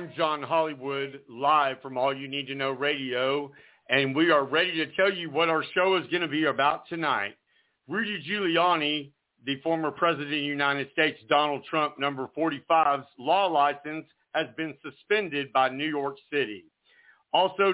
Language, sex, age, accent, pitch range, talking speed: English, male, 50-69, American, 140-175 Hz, 170 wpm